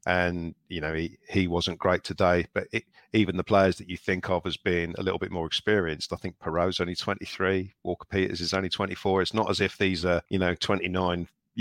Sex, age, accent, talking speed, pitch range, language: male, 50-69, British, 220 wpm, 85-105 Hz, English